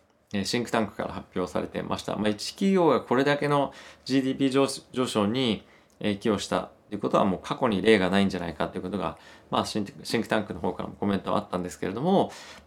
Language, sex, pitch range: Japanese, male, 100-135 Hz